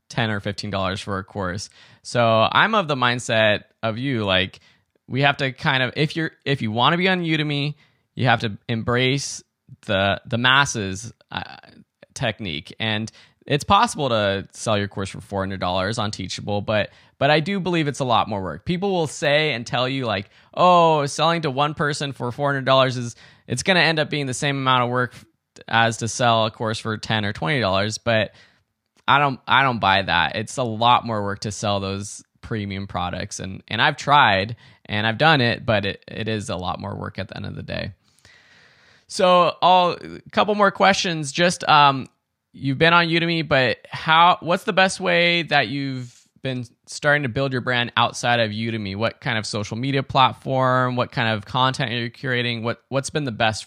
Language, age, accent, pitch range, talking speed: English, 20-39, American, 110-145 Hz, 205 wpm